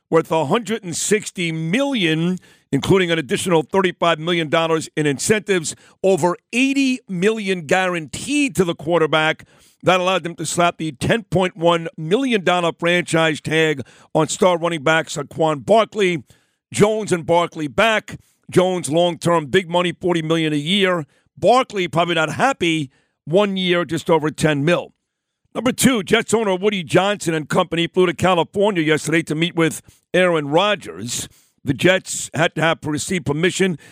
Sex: male